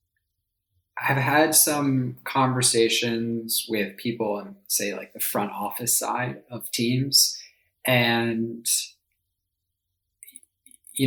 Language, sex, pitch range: English, male, 110-135 Hz